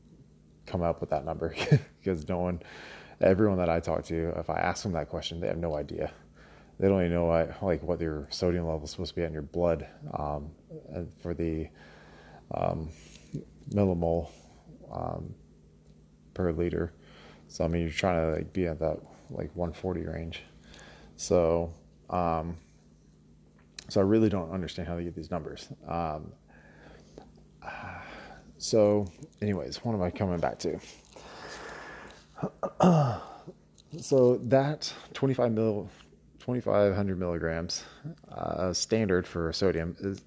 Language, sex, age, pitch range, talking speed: English, male, 30-49, 80-95 Hz, 140 wpm